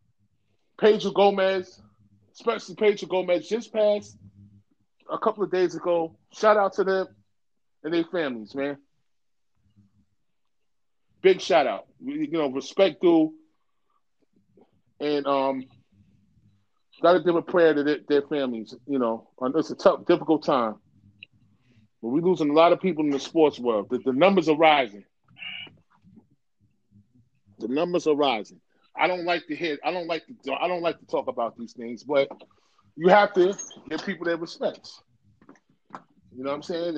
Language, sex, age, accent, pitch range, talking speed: English, male, 30-49, American, 120-185 Hz, 155 wpm